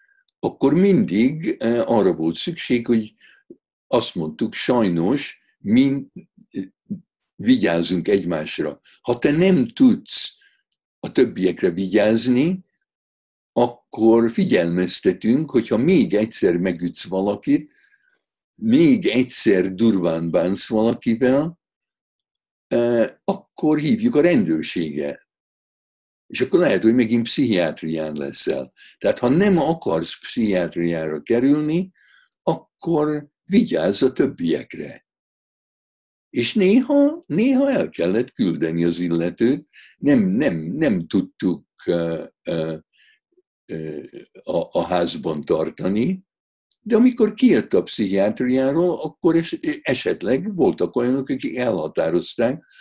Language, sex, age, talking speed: Hungarian, male, 60-79, 90 wpm